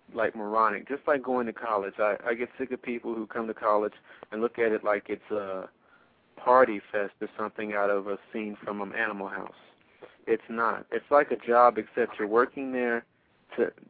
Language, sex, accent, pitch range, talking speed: English, male, American, 105-115 Hz, 205 wpm